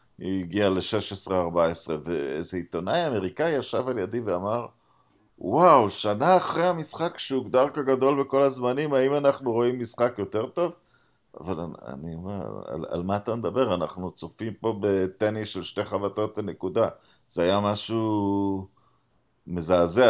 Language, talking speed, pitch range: Hebrew, 140 wpm, 100-135 Hz